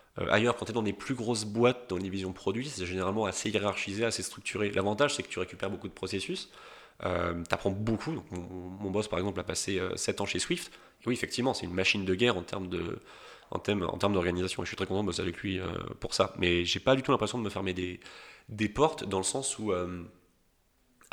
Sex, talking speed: male, 260 wpm